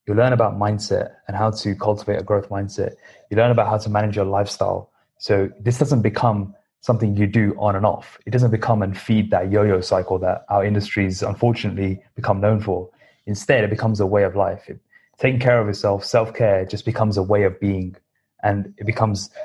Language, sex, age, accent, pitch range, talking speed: English, male, 20-39, British, 100-115 Hz, 200 wpm